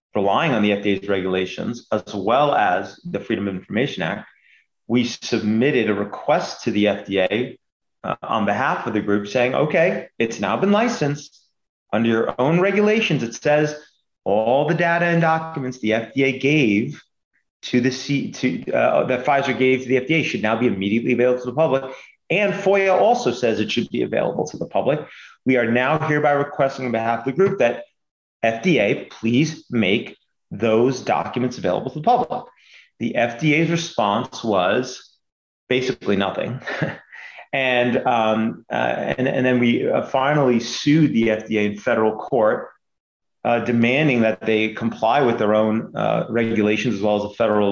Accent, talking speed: American, 165 wpm